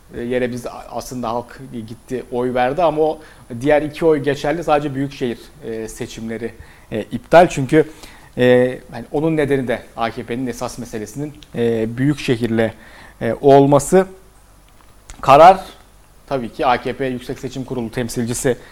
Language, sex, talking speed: Turkish, male, 110 wpm